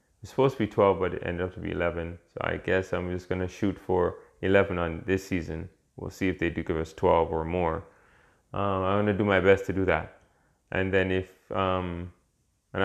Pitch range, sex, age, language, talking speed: 85-95 Hz, male, 20-39, English, 225 wpm